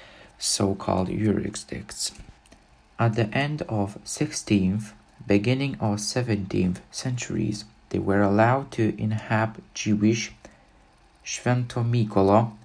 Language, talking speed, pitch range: Czech, 85 wpm, 100-115 Hz